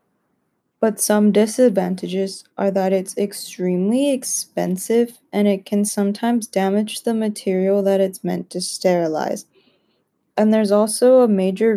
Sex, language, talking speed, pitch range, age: female, English, 125 wpm, 190-215 Hz, 20-39